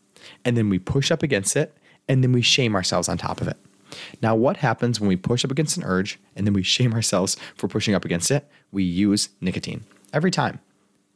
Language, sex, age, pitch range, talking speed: English, male, 20-39, 100-135 Hz, 220 wpm